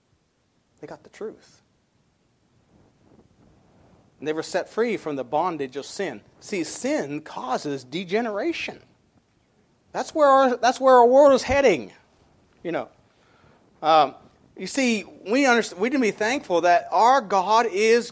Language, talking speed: English, 125 wpm